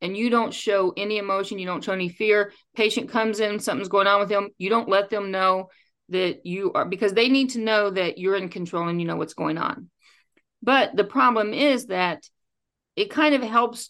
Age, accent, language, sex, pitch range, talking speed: 40-59, American, English, female, 200-270 Hz, 220 wpm